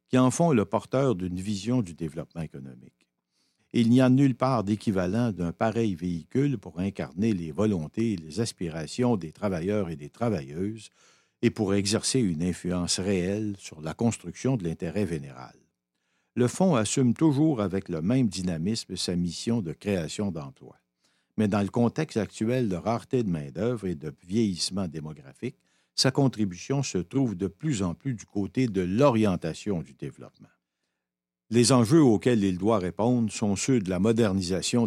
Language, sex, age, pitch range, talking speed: French, male, 60-79, 90-120 Hz, 160 wpm